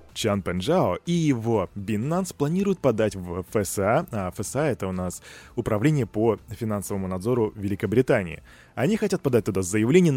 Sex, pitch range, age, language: male, 105-150 Hz, 20-39, Russian